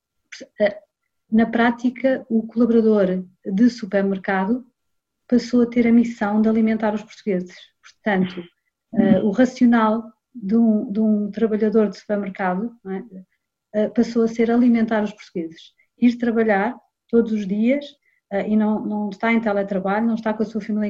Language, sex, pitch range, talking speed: Portuguese, female, 200-235 Hz, 145 wpm